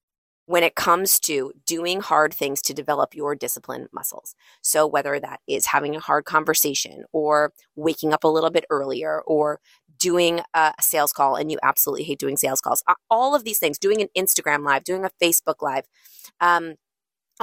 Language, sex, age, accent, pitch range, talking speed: English, female, 20-39, American, 155-190 Hz, 180 wpm